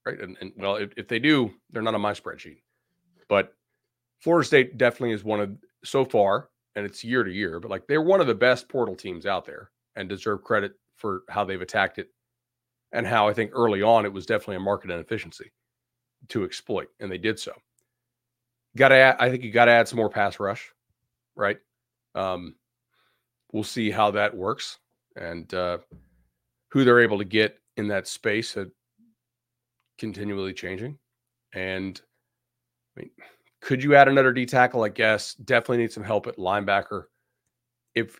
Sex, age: male, 40-59